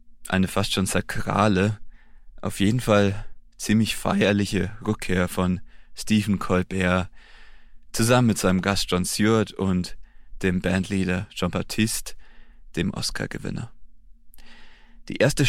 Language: German